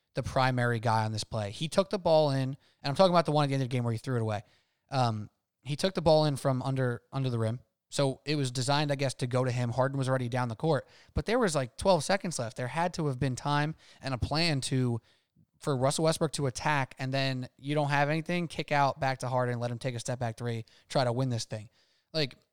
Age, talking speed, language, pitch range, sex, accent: 20-39, 270 wpm, English, 125-150 Hz, male, American